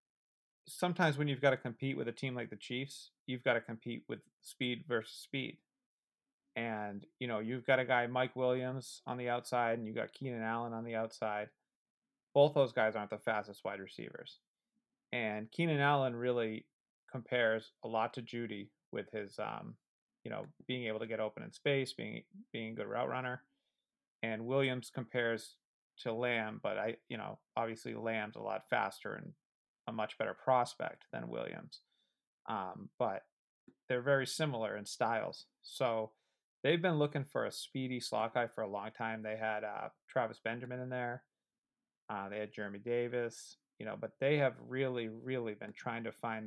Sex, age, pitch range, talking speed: male, 30-49, 115-135 Hz, 180 wpm